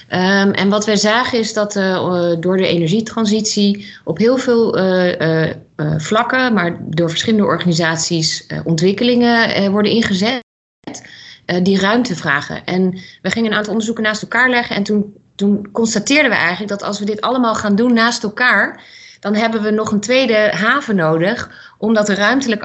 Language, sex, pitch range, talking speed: Dutch, female, 175-225 Hz, 175 wpm